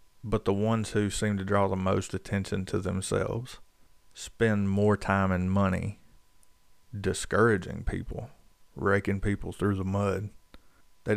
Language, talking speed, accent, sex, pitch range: English, 135 wpm, American, male, 95-105 Hz